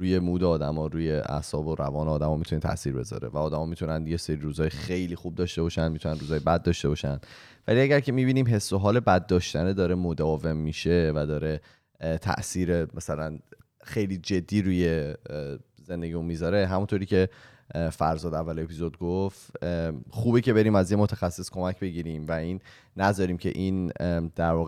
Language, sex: Persian, male